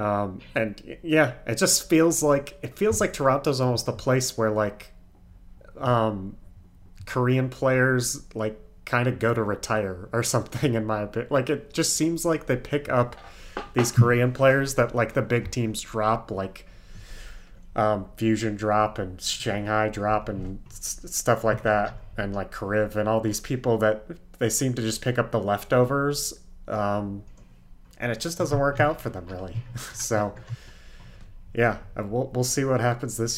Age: 30-49